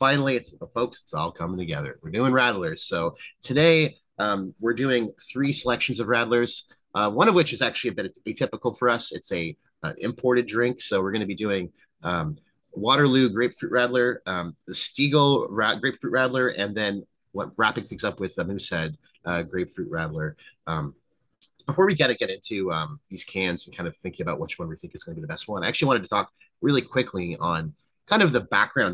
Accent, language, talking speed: American, English, 210 wpm